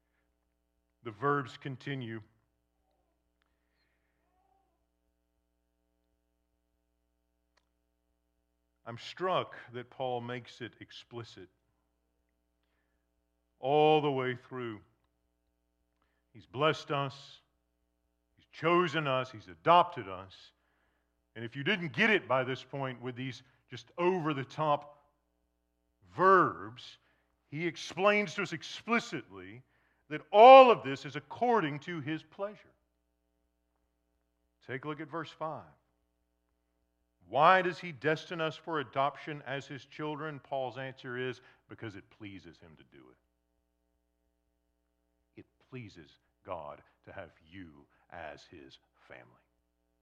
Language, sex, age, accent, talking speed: English, male, 50-69, American, 105 wpm